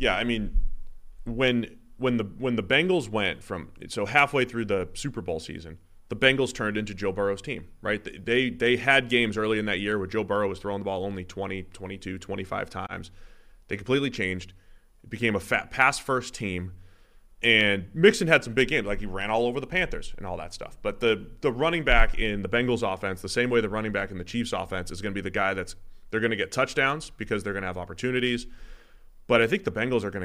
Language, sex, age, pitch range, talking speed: English, male, 30-49, 95-115 Hz, 225 wpm